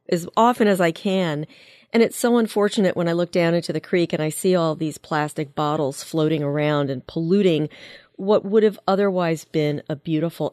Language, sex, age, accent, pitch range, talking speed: English, female, 40-59, American, 165-210 Hz, 195 wpm